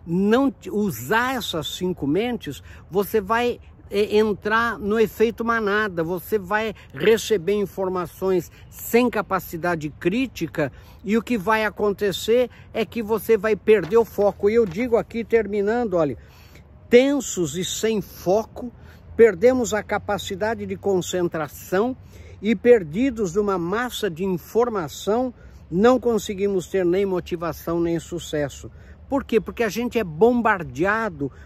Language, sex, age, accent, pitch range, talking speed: Portuguese, male, 60-79, Brazilian, 175-225 Hz, 125 wpm